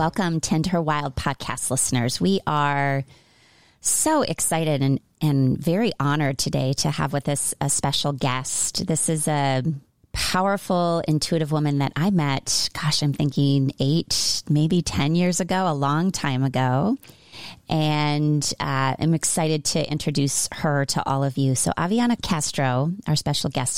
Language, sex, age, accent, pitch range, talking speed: English, female, 30-49, American, 140-175 Hz, 150 wpm